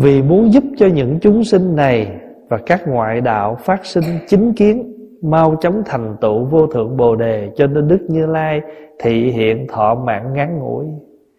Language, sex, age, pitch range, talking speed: Vietnamese, male, 20-39, 130-165 Hz, 185 wpm